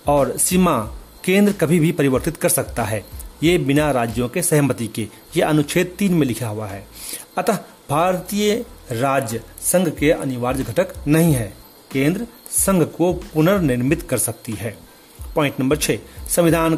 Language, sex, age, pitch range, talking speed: Hindi, male, 40-59, 125-175 Hz, 150 wpm